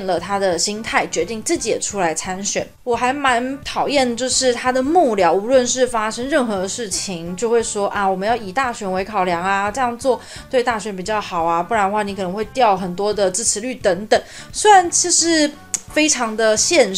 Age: 20-39